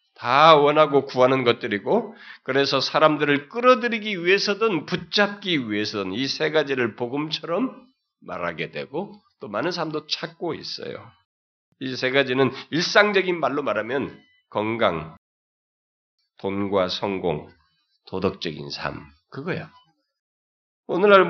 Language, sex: Korean, male